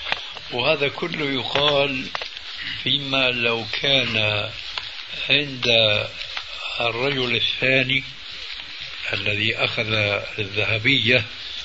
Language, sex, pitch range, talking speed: Arabic, male, 120-145 Hz, 60 wpm